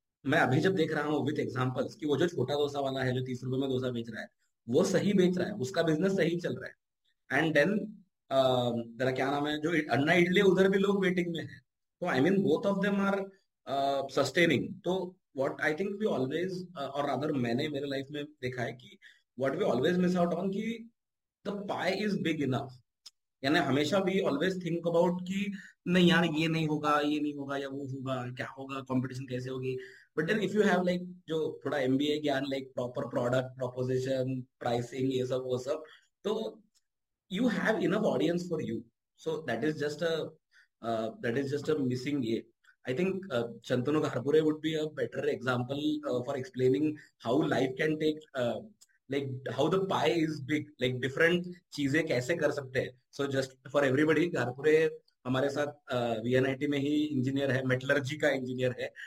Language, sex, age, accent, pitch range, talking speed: Hindi, male, 30-49, native, 130-175 Hz, 85 wpm